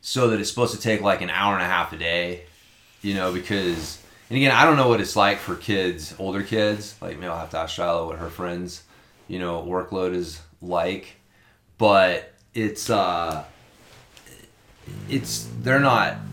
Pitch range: 90-115 Hz